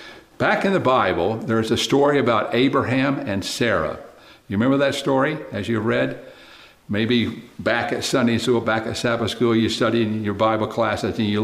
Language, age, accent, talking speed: English, 60-79, American, 185 wpm